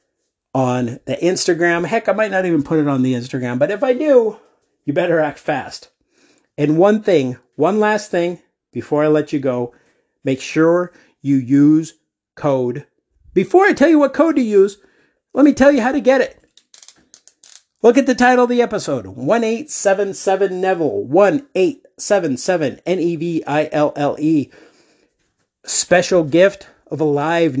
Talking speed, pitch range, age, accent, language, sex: 175 wpm, 145-195 Hz, 50-69, American, English, male